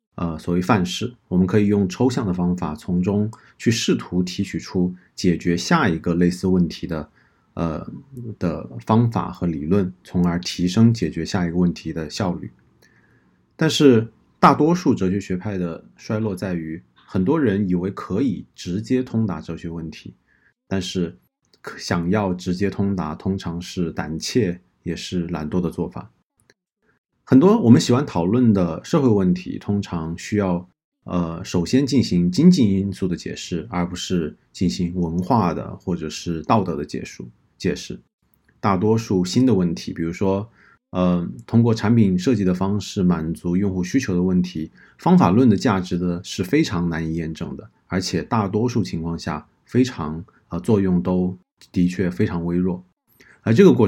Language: Chinese